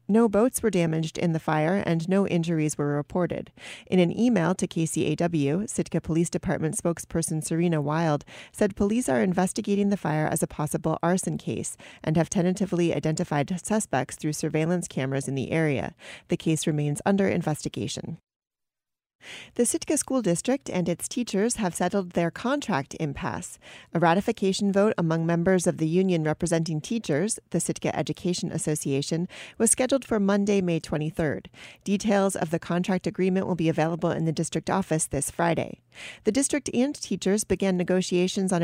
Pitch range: 160-200 Hz